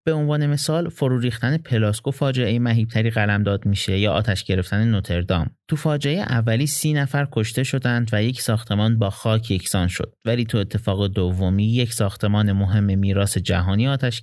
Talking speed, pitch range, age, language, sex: 170 wpm, 100-125 Hz, 30-49, Persian, male